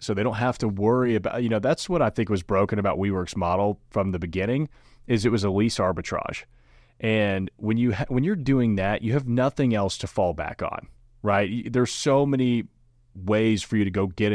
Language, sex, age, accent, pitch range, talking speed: English, male, 30-49, American, 95-120 Hz, 220 wpm